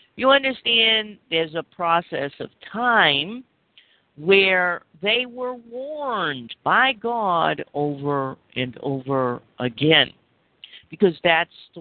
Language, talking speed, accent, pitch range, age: English, 100 wpm, American, 155-235 Hz, 50-69